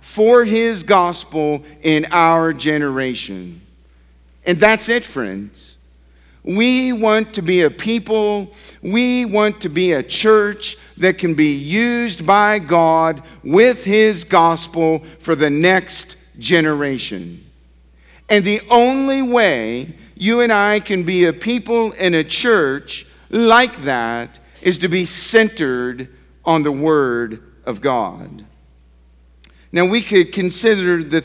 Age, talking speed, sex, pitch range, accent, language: 50-69, 125 wpm, male, 140-205 Hz, American, English